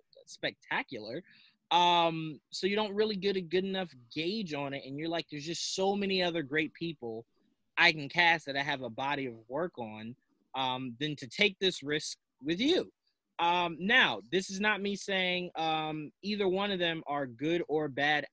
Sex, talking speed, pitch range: male, 190 wpm, 140-185 Hz